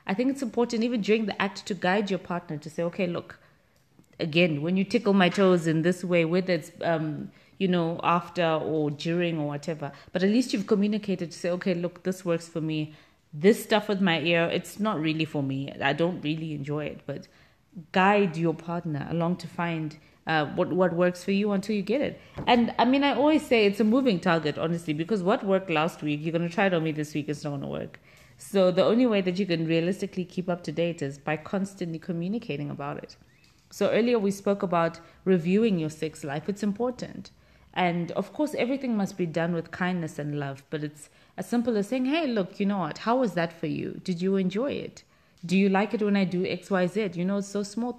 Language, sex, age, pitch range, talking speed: English, female, 20-39, 160-205 Hz, 230 wpm